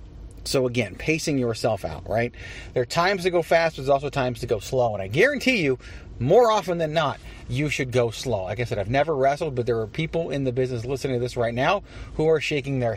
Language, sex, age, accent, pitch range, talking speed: English, male, 30-49, American, 105-145 Hz, 245 wpm